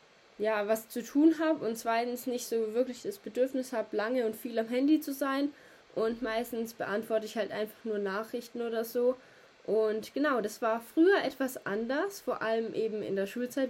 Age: 20-39